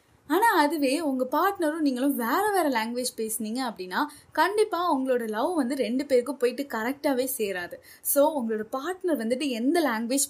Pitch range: 245-330 Hz